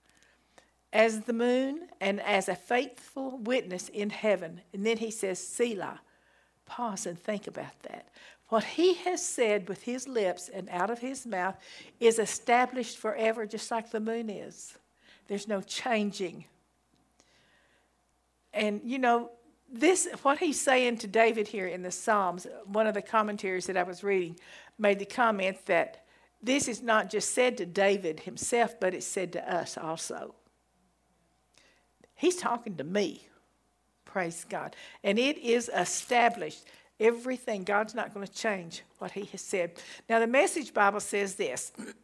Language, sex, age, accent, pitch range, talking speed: English, female, 60-79, American, 190-240 Hz, 155 wpm